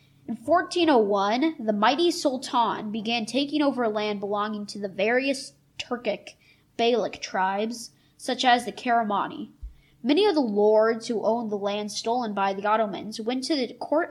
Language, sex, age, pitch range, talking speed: English, female, 20-39, 205-275 Hz, 150 wpm